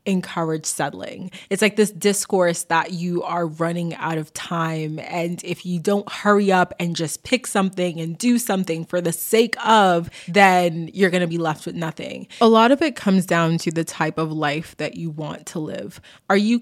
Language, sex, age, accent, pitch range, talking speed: English, female, 20-39, American, 165-190 Hz, 200 wpm